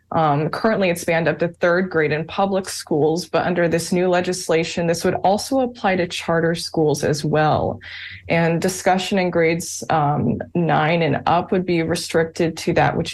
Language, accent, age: English, American, 20-39